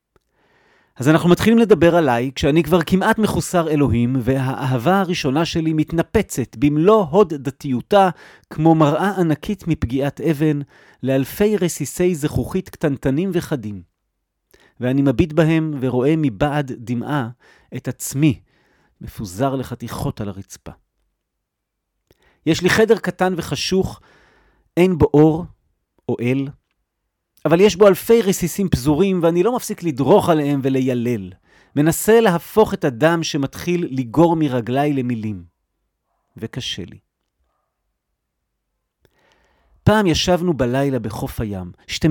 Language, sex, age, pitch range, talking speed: Hebrew, male, 40-59, 120-170 Hz, 110 wpm